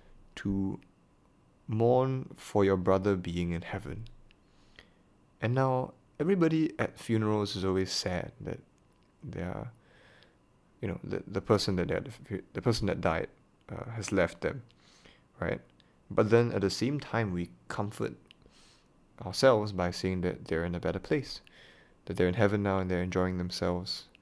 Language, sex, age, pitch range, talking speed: English, male, 20-39, 90-115 Hz, 150 wpm